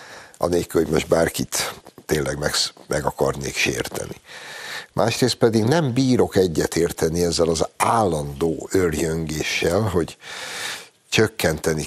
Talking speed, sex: 100 wpm, male